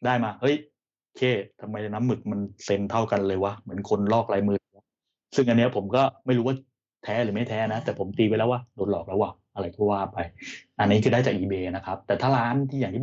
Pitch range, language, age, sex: 100-125 Hz, Thai, 20-39, male